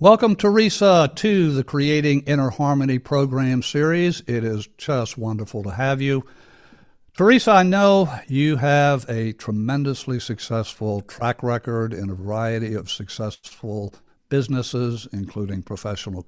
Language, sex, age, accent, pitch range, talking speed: English, male, 60-79, American, 115-150 Hz, 125 wpm